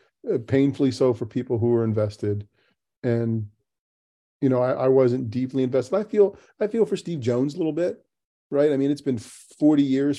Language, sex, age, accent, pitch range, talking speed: English, male, 40-59, American, 115-135 Hz, 190 wpm